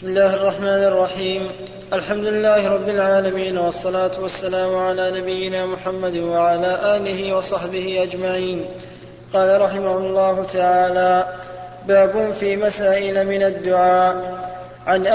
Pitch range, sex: 185-205 Hz, male